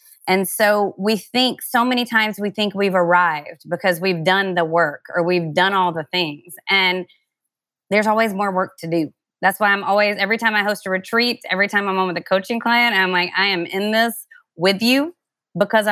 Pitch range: 175-210 Hz